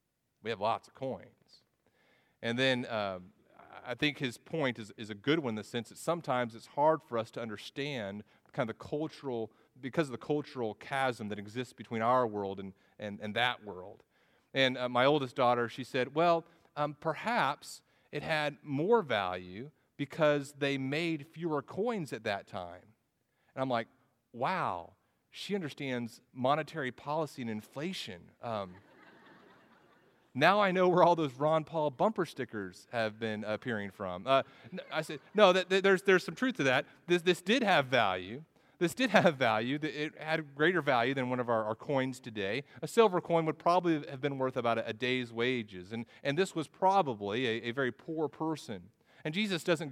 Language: English